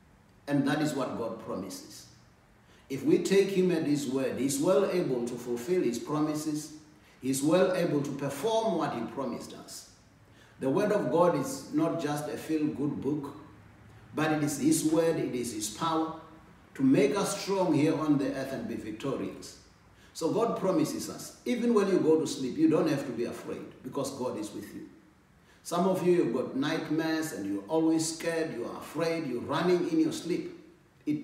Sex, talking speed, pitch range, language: male, 190 wpm, 135-170 Hz, English